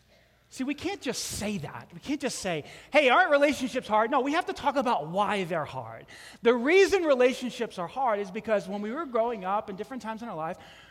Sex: male